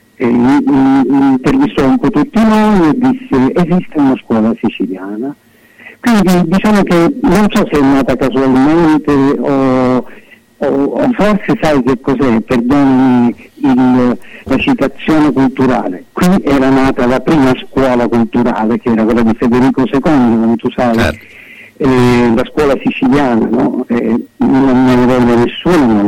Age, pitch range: 60-79, 125-195 Hz